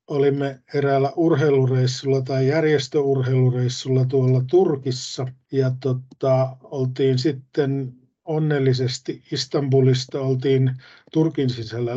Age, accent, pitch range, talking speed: 50-69, native, 125-145 Hz, 80 wpm